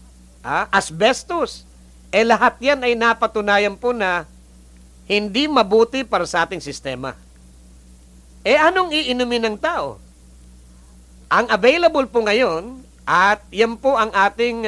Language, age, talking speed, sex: English, 50-69, 120 wpm, male